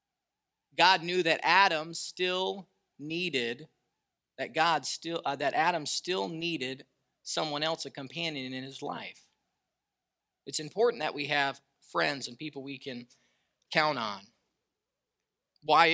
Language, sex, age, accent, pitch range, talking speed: English, male, 30-49, American, 135-165 Hz, 130 wpm